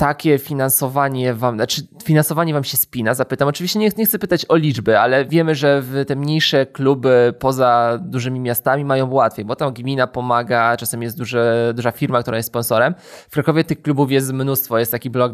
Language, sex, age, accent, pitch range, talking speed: Polish, male, 20-39, native, 120-140 Hz, 185 wpm